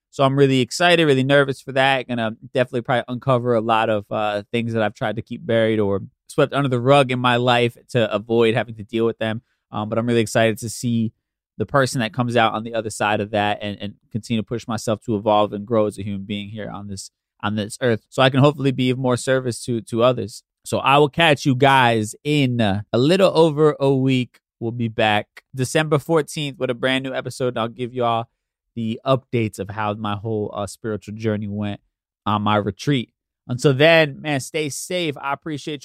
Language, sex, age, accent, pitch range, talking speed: English, male, 20-39, American, 110-135 Hz, 225 wpm